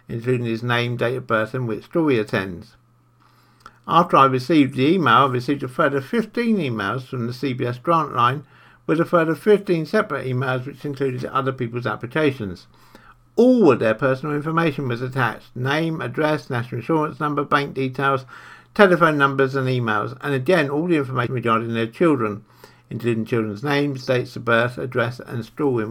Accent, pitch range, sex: British, 120-145 Hz, male